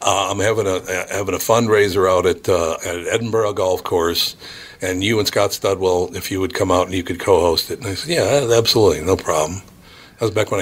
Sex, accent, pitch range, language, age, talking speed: male, American, 95-120 Hz, English, 60-79, 230 wpm